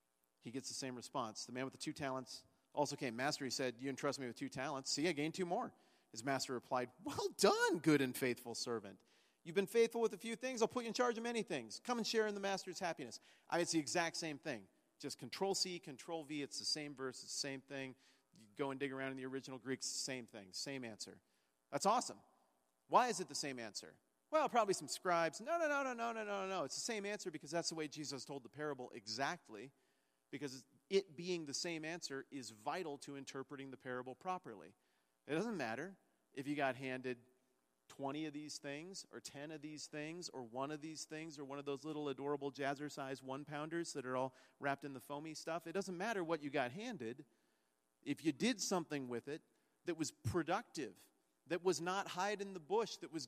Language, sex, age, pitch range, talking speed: English, male, 40-59, 130-180 Hz, 220 wpm